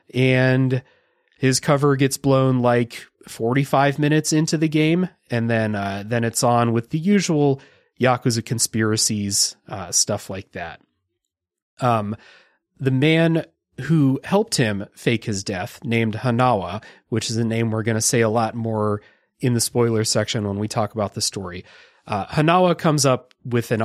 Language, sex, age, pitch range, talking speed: English, male, 30-49, 110-140 Hz, 160 wpm